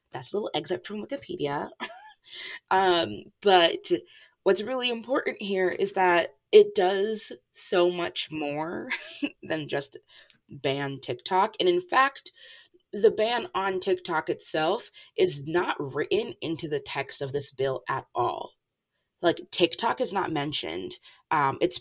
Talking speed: 135 wpm